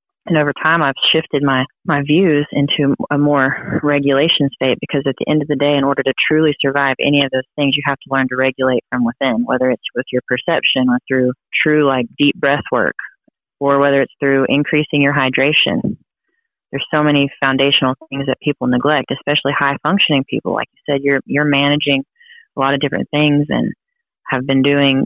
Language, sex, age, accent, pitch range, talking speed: English, female, 30-49, American, 135-145 Hz, 200 wpm